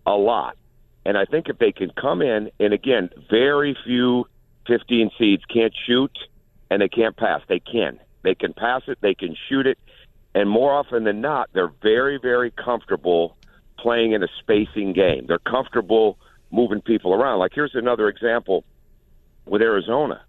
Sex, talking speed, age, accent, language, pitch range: male, 170 wpm, 50-69, American, English, 105-135 Hz